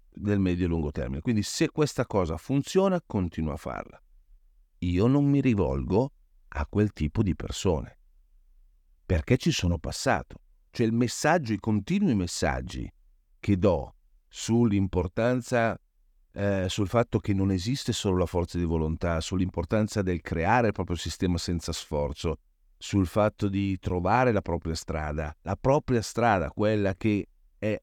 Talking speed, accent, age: 145 wpm, native, 50-69